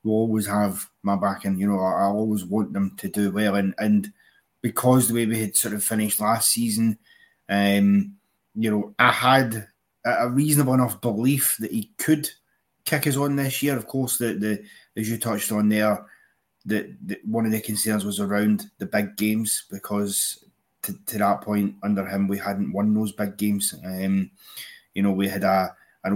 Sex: male